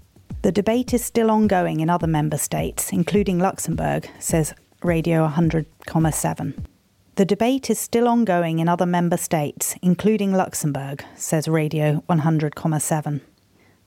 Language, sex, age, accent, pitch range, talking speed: English, female, 30-49, British, 160-195 Hz, 120 wpm